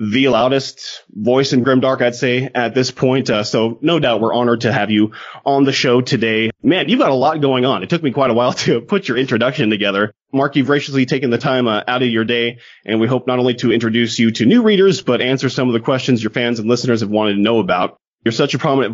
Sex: male